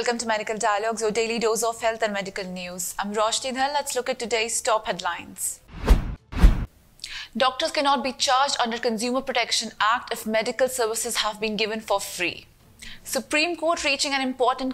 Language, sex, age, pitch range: English, female, 30-49, 215-255 Hz